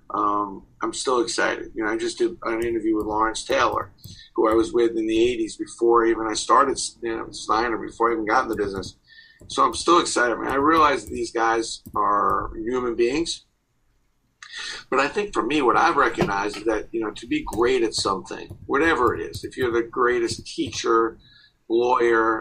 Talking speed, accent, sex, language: 200 wpm, American, male, English